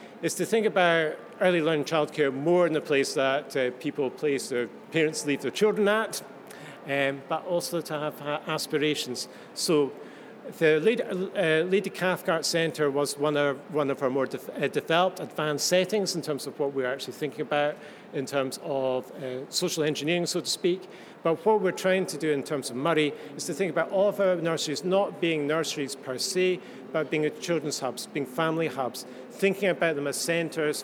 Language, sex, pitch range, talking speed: English, male, 140-170 Hz, 190 wpm